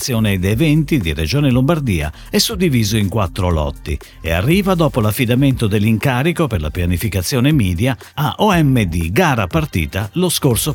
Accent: native